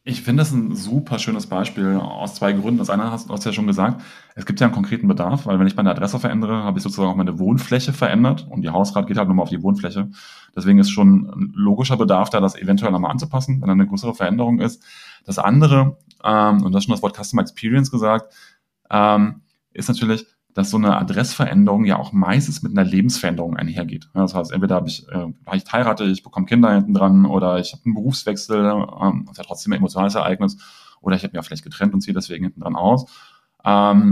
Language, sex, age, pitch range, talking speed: German, male, 30-49, 100-140 Hz, 225 wpm